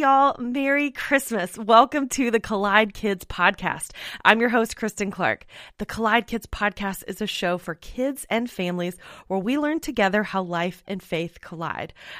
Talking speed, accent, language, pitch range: 165 wpm, American, English, 185-230 Hz